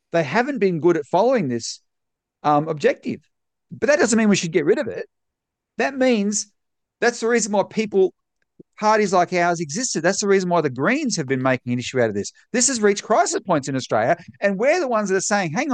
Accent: Australian